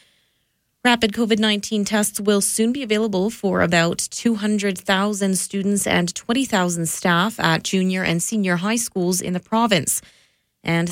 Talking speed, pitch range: 135 wpm, 175-205 Hz